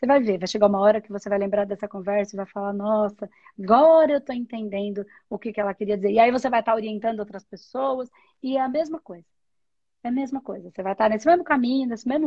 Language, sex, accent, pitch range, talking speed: Portuguese, female, Brazilian, 195-235 Hz, 255 wpm